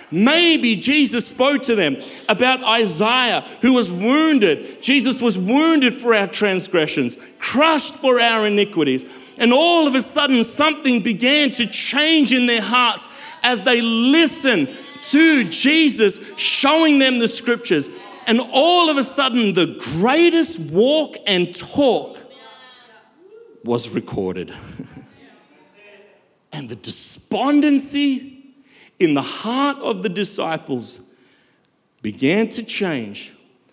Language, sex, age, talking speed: English, male, 40-59, 115 wpm